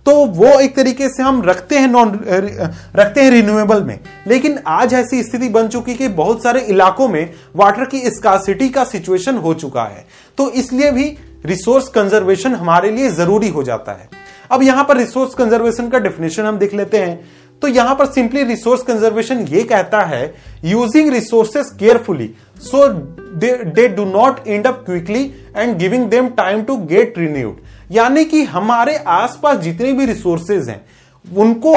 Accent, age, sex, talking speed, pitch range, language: native, 30-49, male, 160 wpm, 185-255 Hz, Hindi